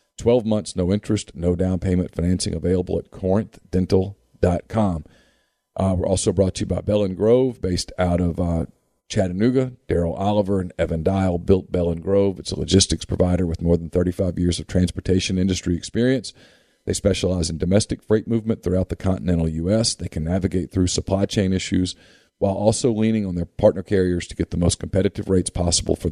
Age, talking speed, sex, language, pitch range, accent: 50-69, 175 wpm, male, English, 90-100 Hz, American